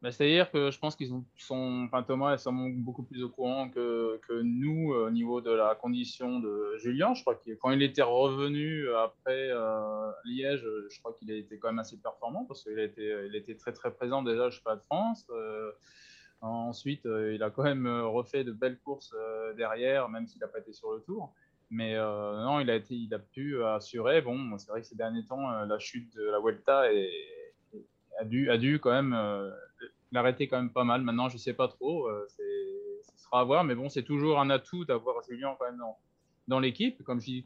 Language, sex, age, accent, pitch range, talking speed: French, male, 20-39, French, 115-140 Hz, 230 wpm